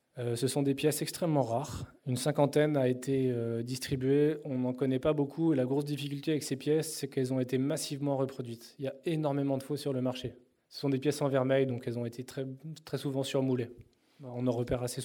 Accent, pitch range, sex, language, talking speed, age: French, 130-150 Hz, male, French, 220 wpm, 20-39